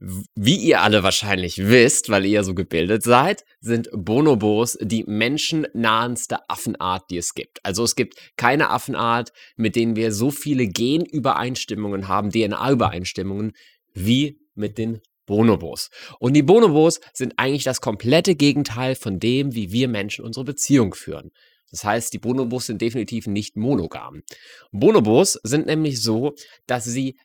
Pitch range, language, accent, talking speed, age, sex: 110-155 Hz, German, German, 145 wpm, 30-49, male